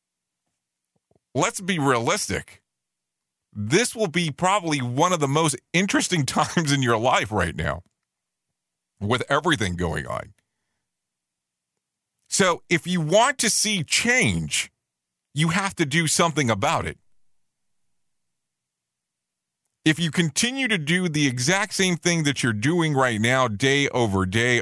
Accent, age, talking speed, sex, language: American, 40-59, 130 wpm, male, English